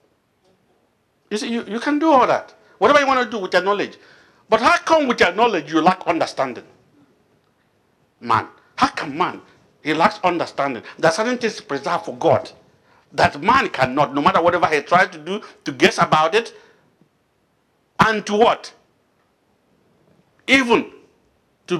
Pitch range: 170-265 Hz